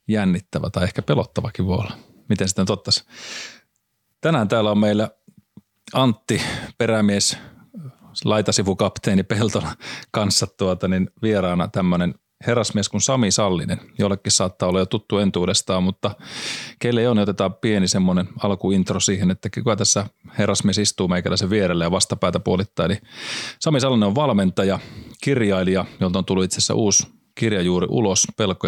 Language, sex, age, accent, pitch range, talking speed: Finnish, male, 30-49, native, 95-110 Hz, 140 wpm